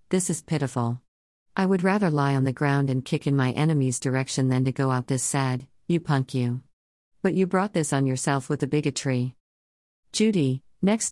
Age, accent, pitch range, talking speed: 50-69, American, 130-170 Hz, 195 wpm